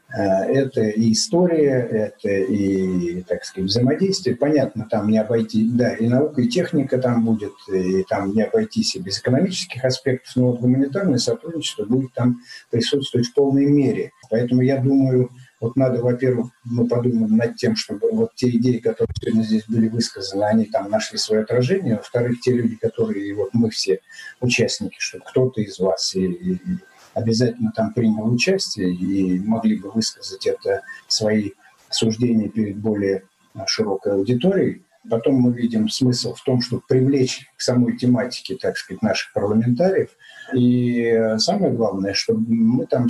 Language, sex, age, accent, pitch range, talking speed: Russian, male, 50-69, native, 110-140 Hz, 155 wpm